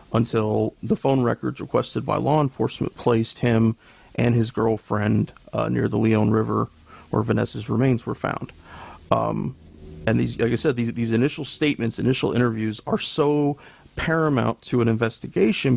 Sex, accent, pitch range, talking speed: male, American, 110-130 Hz, 155 wpm